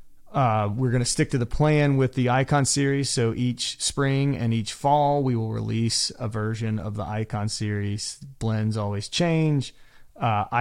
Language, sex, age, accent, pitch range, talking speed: English, male, 30-49, American, 105-125 Hz, 175 wpm